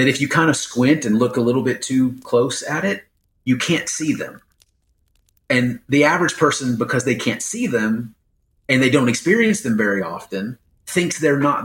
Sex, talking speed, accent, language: male, 195 wpm, American, English